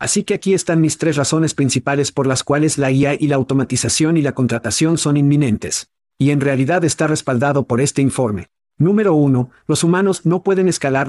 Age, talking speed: 50-69, 195 wpm